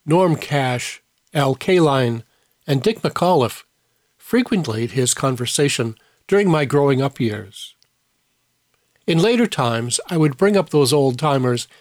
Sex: male